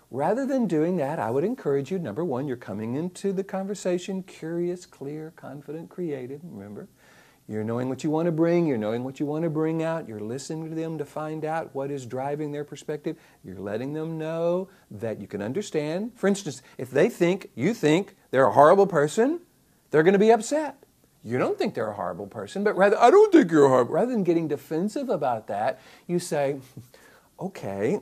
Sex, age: male, 50-69